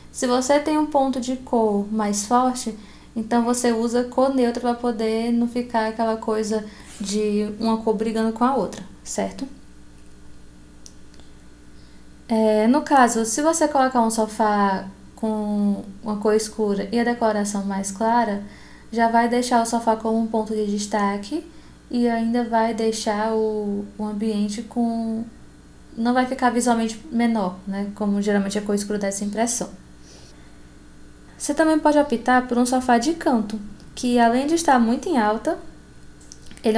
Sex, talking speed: female, 155 wpm